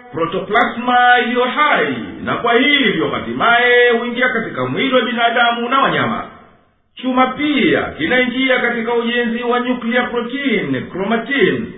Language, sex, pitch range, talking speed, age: Swahili, male, 230-250 Hz, 115 wpm, 50-69